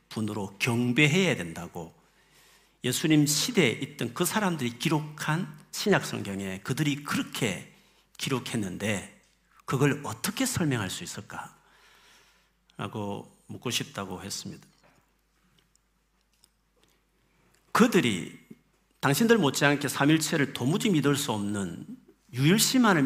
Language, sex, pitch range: Korean, male, 115-170 Hz